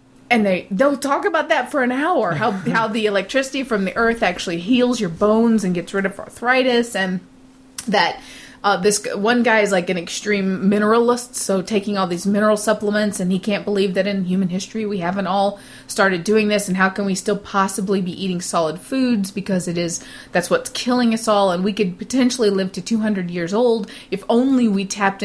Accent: American